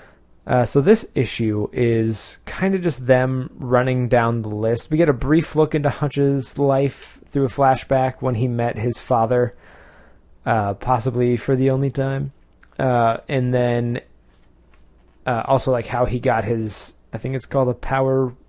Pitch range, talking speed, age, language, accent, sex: 110-130 Hz, 165 wpm, 20-39, English, American, male